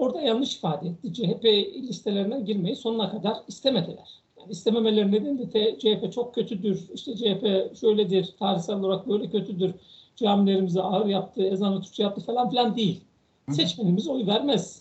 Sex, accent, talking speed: male, native, 145 wpm